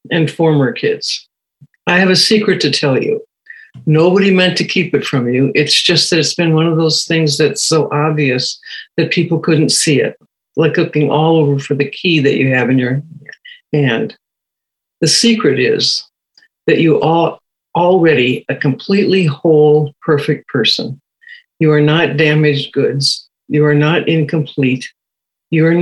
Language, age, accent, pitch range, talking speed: English, 60-79, American, 145-165 Hz, 165 wpm